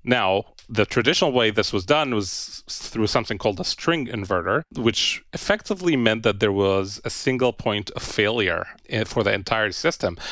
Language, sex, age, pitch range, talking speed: English, male, 30-49, 100-130 Hz, 170 wpm